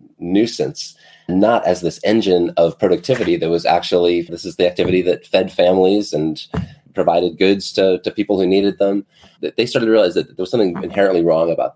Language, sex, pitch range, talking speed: English, male, 85-95 Hz, 190 wpm